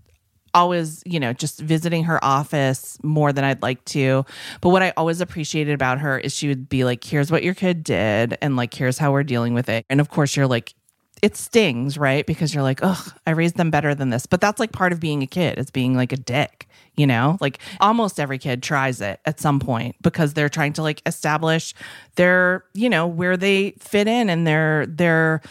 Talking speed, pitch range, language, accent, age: 225 wpm, 130-165 Hz, English, American, 30-49